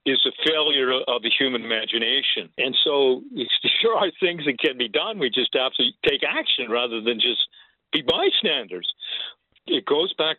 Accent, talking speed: American, 175 wpm